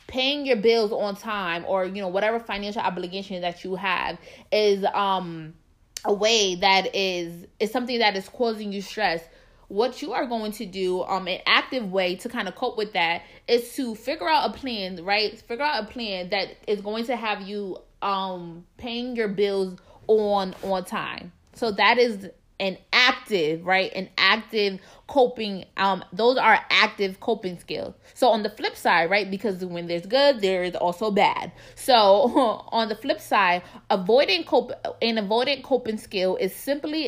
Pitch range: 190-235 Hz